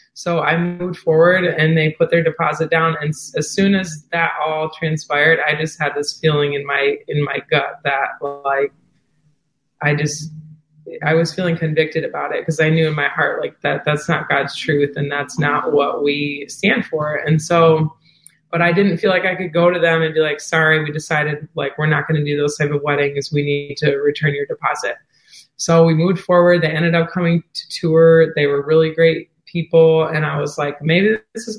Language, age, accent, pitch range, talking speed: English, 20-39, American, 150-170 Hz, 215 wpm